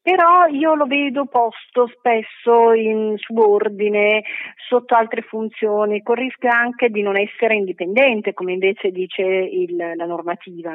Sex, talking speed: female, 135 wpm